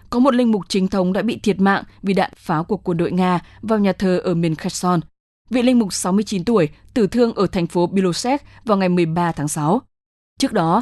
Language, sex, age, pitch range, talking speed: English, female, 20-39, 170-220 Hz, 225 wpm